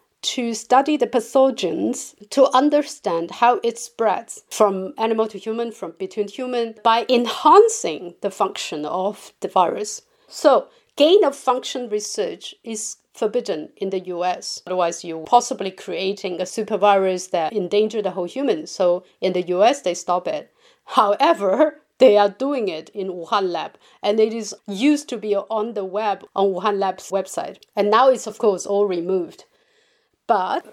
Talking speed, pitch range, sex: 155 wpm, 200-270 Hz, female